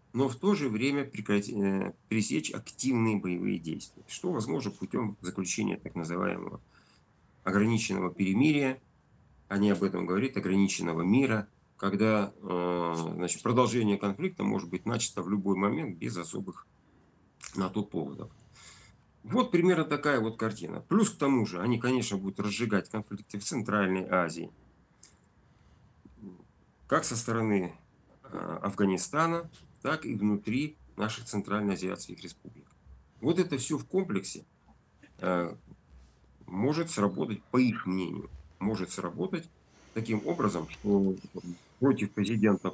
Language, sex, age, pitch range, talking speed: Russian, male, 50-69, 95-125 Hz, 120 wpm